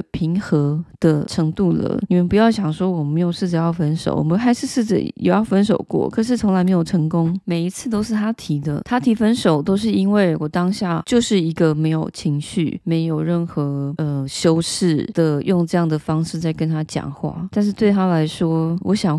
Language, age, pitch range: Chinese, 20-39, 160-195 Hz